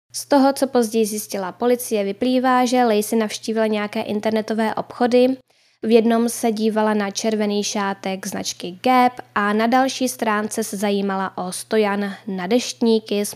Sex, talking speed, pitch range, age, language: female, 150 wpm, 200-255 Hz, 10-29, Czech